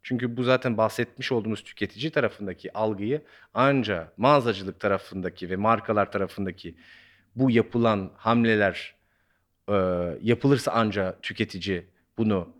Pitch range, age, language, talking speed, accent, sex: 95-145 Hz, 40-59, Turkish, 105 wpm, native, male